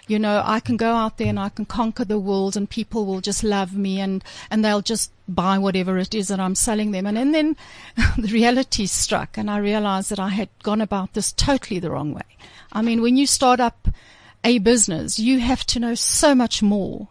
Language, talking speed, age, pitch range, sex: English, 230 wpm, 60-79, 200-245 Hz, female